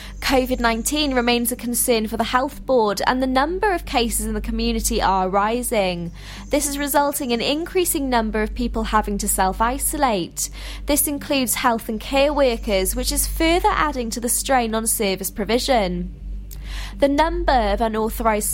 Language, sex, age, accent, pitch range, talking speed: English, female, 20-39, British, 210-275 Hz, 160 wpm